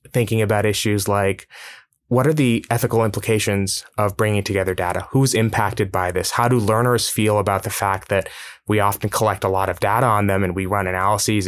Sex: male